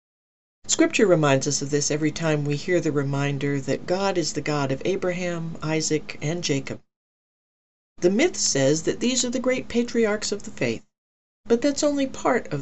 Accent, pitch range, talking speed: American, 150-205 Hz, 180 wpm